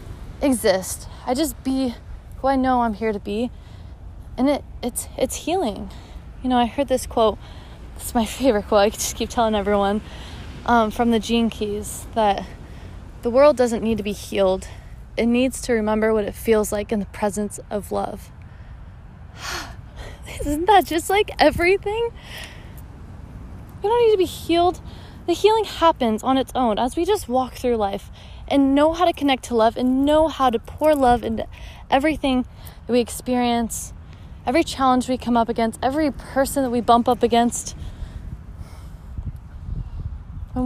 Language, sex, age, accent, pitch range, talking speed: English, female, 20-39, American, 215-275 Hz, 165 wpm